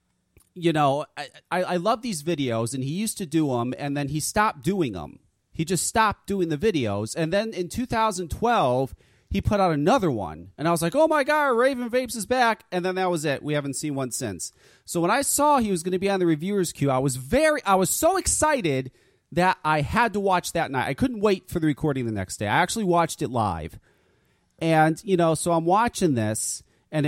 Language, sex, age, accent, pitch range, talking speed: English, male, 30-49, American, 130-185 Hz, 235 wpm